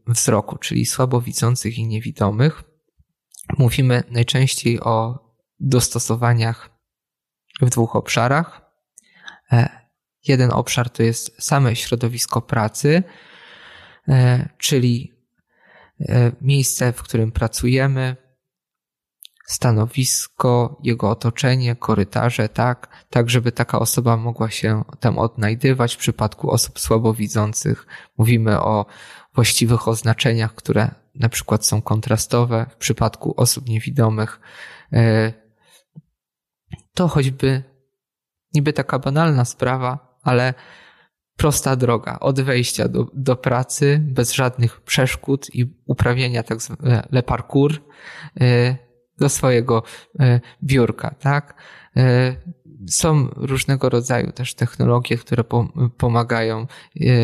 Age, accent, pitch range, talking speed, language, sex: 20-39, native, 115-135 Hz, 90 wpm, Polish, male